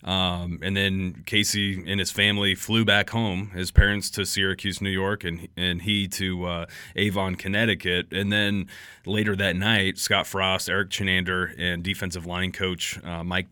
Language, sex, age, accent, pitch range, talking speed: English, male, 30-49, American, 90-100 Hz, 170 wpm